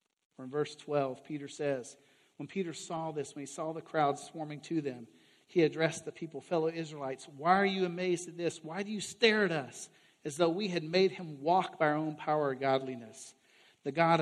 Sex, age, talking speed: male, 50-69, 210 wpm